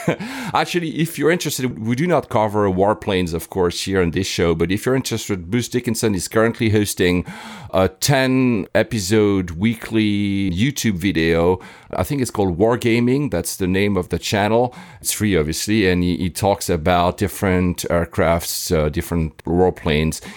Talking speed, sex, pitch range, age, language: 155 wpm, male, 90-115 Hz, 40-59, English